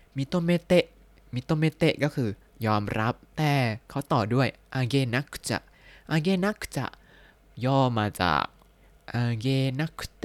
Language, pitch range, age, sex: Thai, 110-155 Hz, 20-39, male